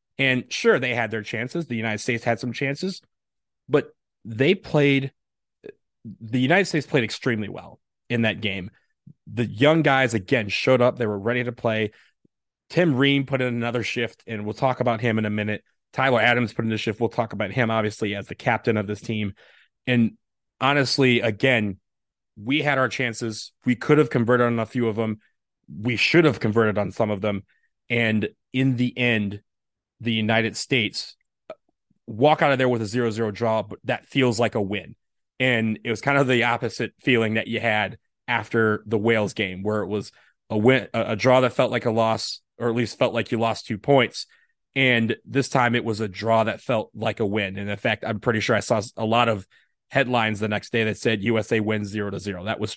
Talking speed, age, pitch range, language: 210 wpm, 30-49, 110-130 Hz, English